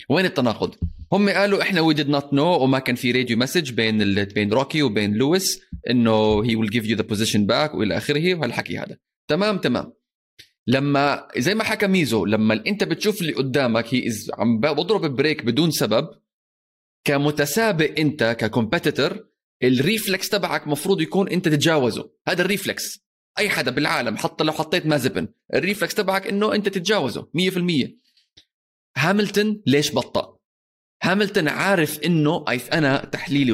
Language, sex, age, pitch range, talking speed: Arabic, male, 20-39, 125-190 Hz, 150 wpm